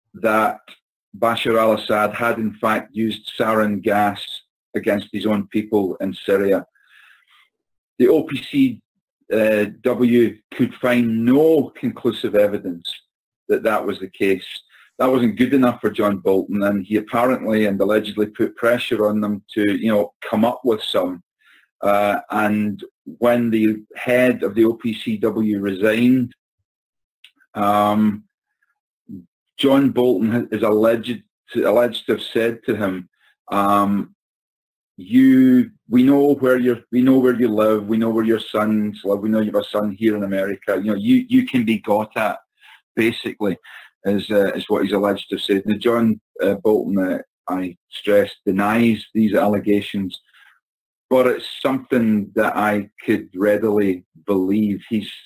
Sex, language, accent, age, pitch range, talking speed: male, English, British, 40-59, 105-125 Hz, 145 wpm